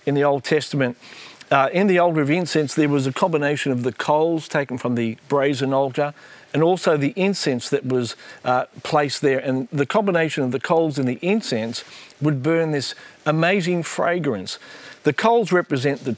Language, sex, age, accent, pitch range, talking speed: English, male, 50-69, Australian, 130-165 Hz, 180 wpm